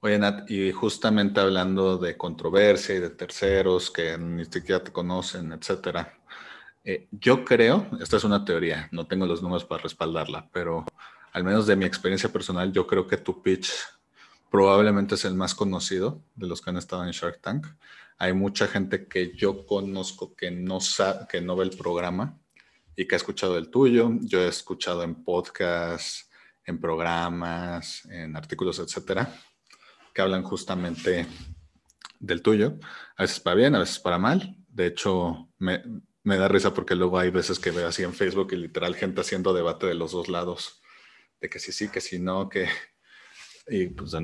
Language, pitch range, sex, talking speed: Spanish, 85-100 Hz, male, 180 wpm